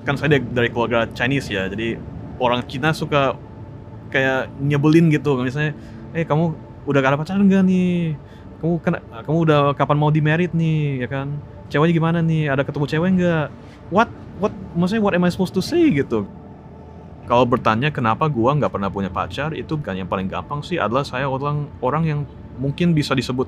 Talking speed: 180 wpm